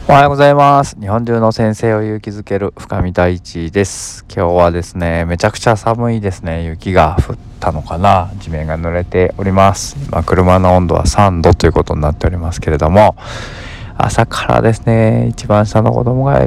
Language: Japanese